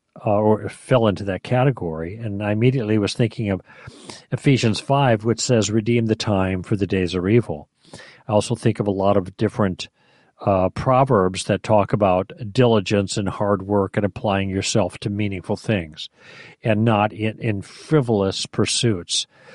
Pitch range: 105-130 Hz